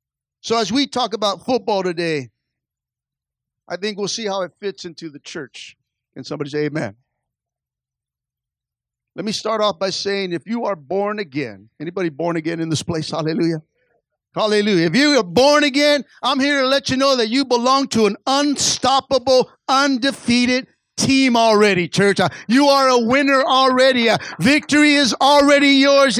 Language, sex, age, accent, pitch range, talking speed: English, male, 50-69, American, 190-275 Hz, 160 wpm